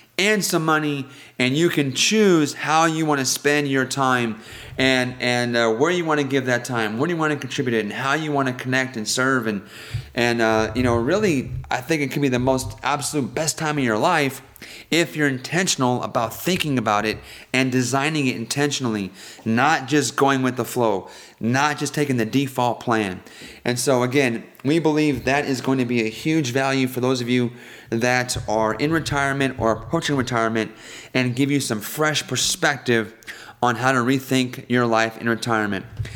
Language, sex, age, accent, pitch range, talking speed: English, male, 30-49, American, 120-150 Hz, 195 wpm